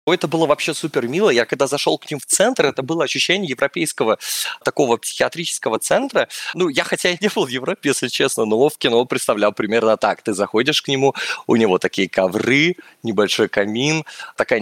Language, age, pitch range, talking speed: Russian, 20-39, 115-150 Hz, 190 wpm